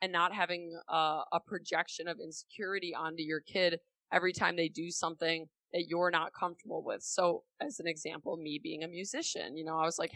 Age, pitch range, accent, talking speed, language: 20-39, 160-185 Hz, American, 200 wpm, English